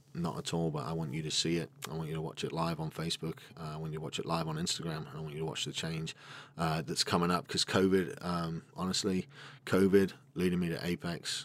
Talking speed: 255 wpm